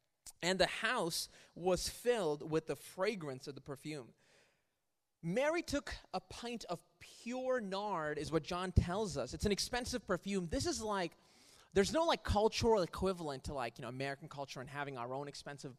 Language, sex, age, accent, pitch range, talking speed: English, male, 30-49, American, 160-245 Hz, 175 wpm